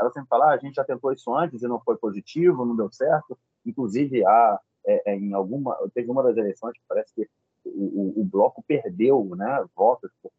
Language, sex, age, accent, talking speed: Portuguese, male, 30-49, Brazilian, 220 wpm